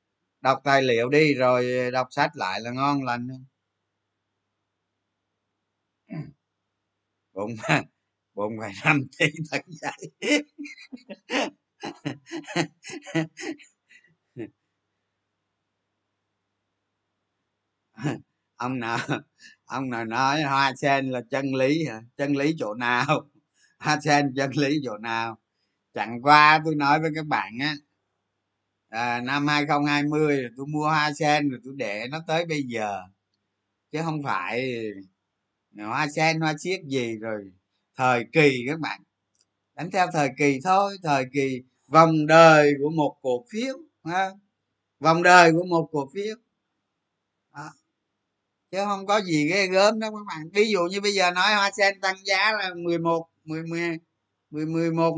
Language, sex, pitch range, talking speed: Vietnamese, male, 110-160 Hz, 130 wpm